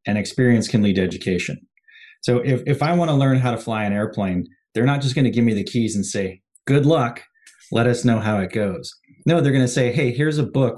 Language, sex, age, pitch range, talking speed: English, male, 30-49, 105-130 Hz, 245 wpm